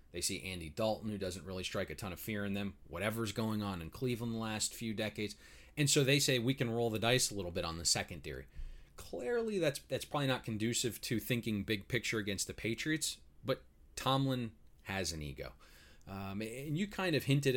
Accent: American